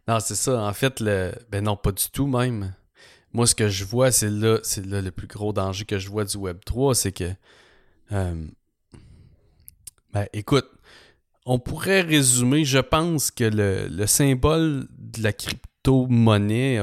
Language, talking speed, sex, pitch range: English, 170 wpm, male, 95-115 Hz